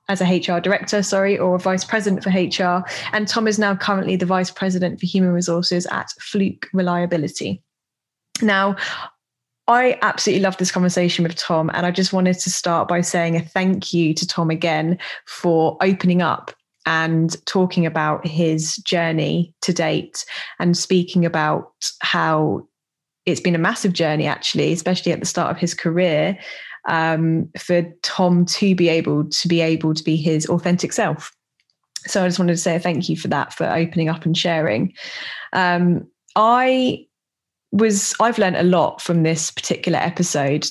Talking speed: 170 wpm